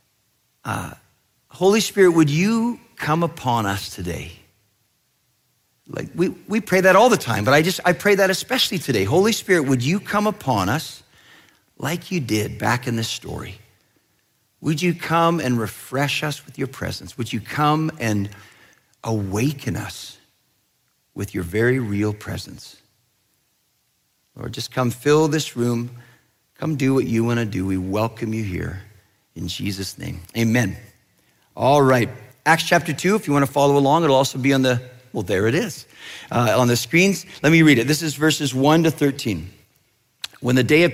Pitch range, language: 105-155 Hz, English